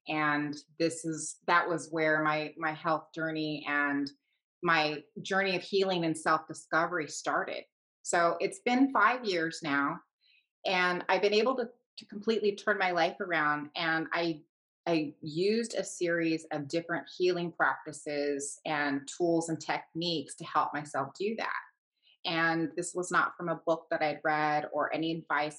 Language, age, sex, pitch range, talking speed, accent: English, 30-49, female, 150-170 Hz, 155 wpm, American